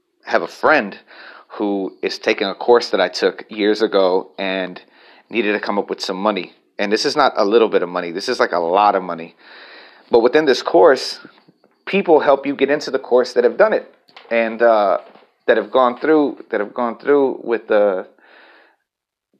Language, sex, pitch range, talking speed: English, male, 100-150 Hz, 200 wpm